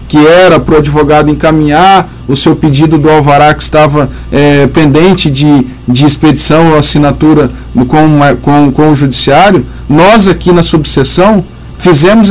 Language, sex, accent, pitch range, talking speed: Portuguese, male, Brazilian, 150-190 Hz, 140 wpm